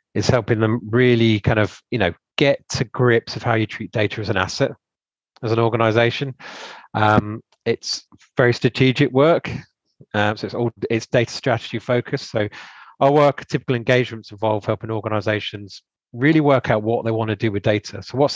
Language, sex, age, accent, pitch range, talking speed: English, male, 30-49, British, 105-120 Hz, 180 wpm